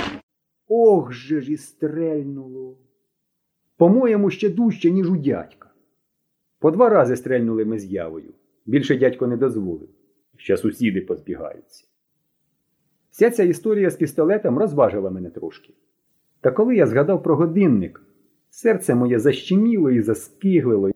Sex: male